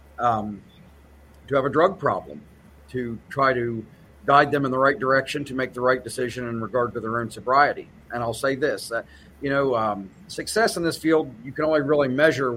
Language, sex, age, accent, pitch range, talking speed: English, male, 50-69, American, 110-140 Hz, 205 wpm